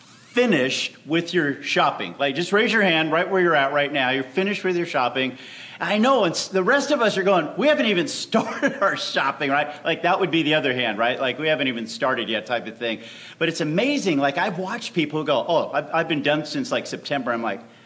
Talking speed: 240 wpm